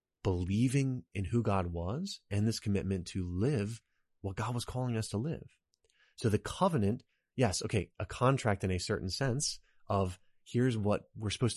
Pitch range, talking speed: 95-115 Hz, 170 wpm